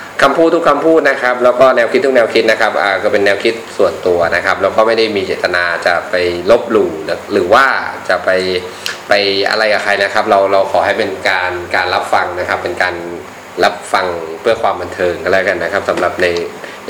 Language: Thai